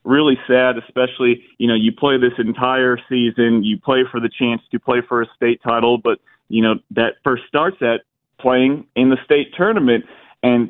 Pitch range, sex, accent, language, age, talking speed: 115-130 Hz, male, American, English, 30-49, 190 wpm